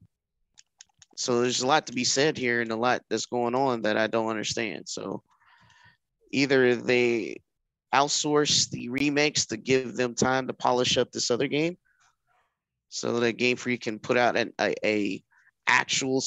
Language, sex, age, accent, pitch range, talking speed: English, male, 20-39, American, 110-135 Hz, 160 wpm